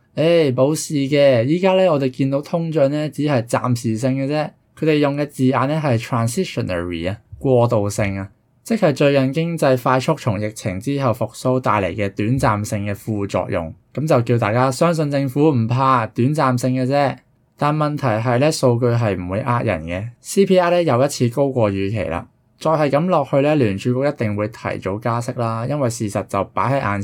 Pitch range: 110-140 Hz